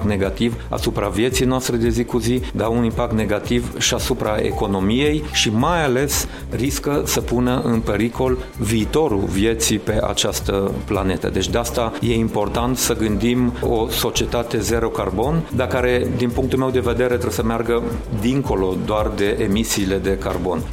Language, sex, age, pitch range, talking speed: Romanian, male, 40-59, 110-130 Hz, 160 wpm